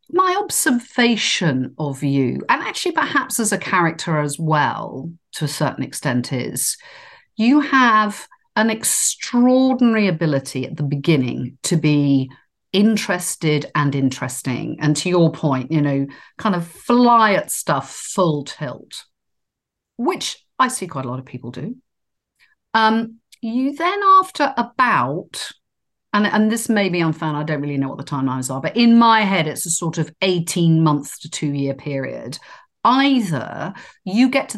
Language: English